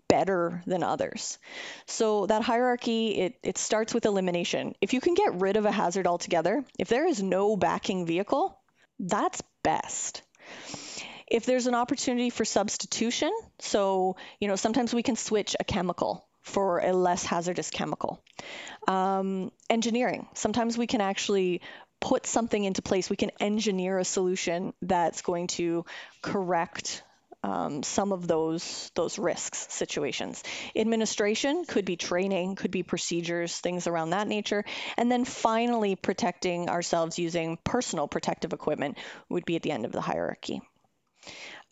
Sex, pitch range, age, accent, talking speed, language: female, 180-235 Hz, 30-49, American, 150 wpm, English